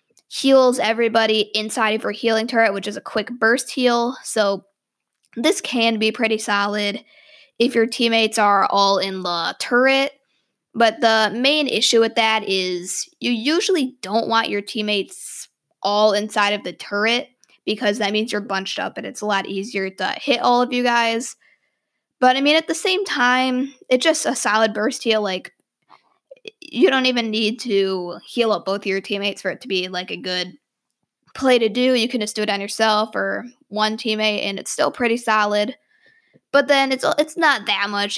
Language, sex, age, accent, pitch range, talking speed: English, female, 20-39, American, 205-255 Hz, 185 wpm